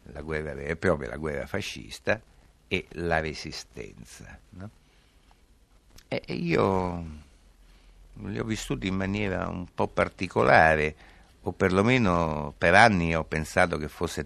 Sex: male